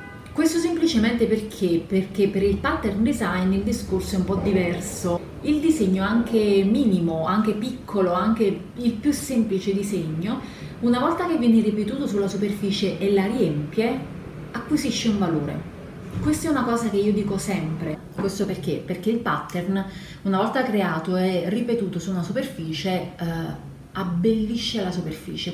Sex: female